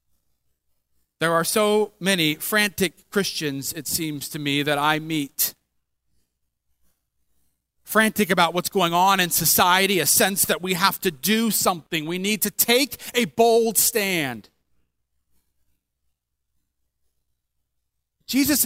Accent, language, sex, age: American, English, male, 40-59